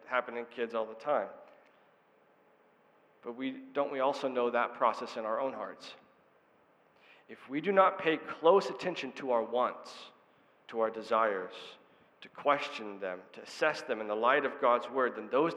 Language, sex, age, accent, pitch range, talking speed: English, male, 40-59, American, 125-165 Hz, 175 wpm